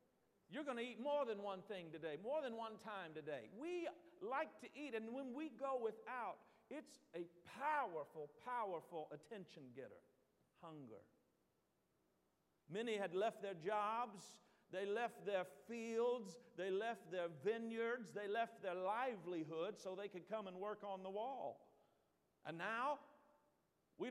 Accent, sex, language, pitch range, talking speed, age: American, male, English, 155-235 Hz, 145 wpm, 50-69